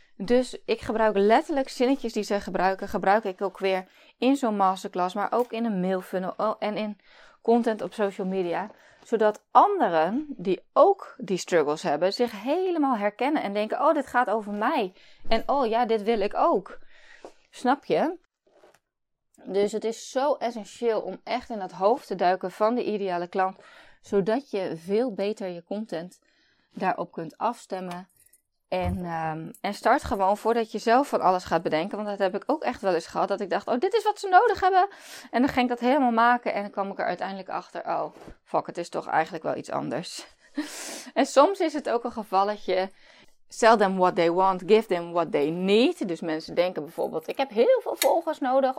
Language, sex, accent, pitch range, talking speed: Dutch, female, Dutch, 190-250 Hz, 195 wpm